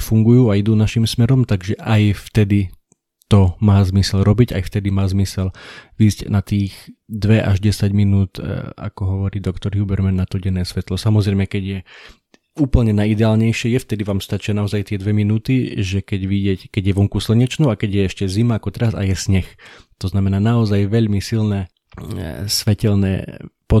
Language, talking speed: Slovak, 170 wpm